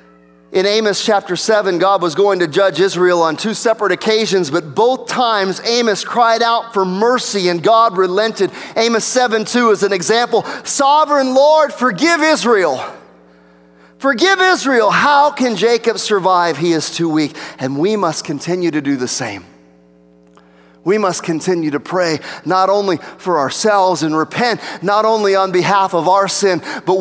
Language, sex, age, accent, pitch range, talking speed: English, male, 30-49, American, 160-215 Hz, 160 wpm